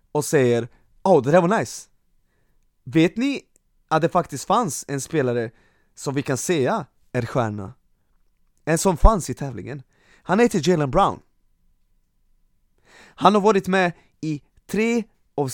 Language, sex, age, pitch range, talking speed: Swedish, male, 20-39, 140-235 Hz, 145 wpm